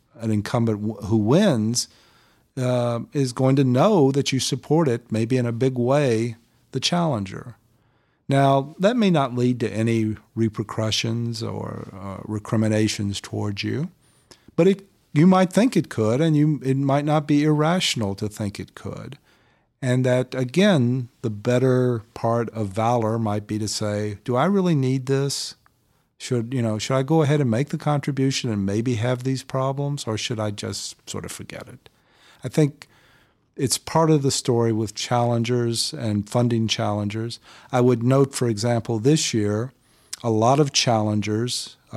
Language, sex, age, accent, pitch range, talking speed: English, male, 50-69, American, 110-140 Hz, 160 wpm